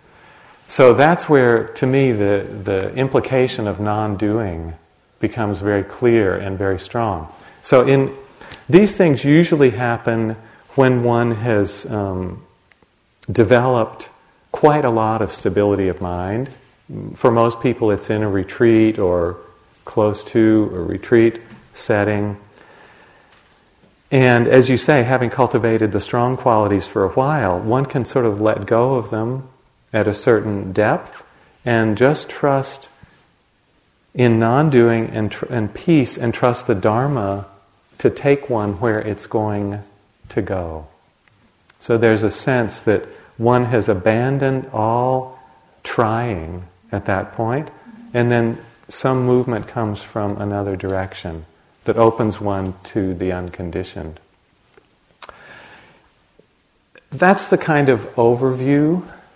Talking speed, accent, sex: 125 wpm, American, male